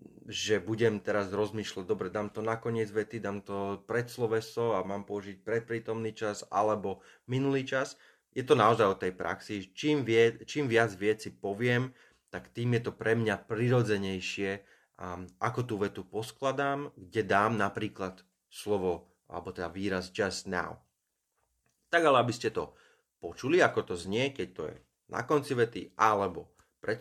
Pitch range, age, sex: 100-120 Hz, 30-49, male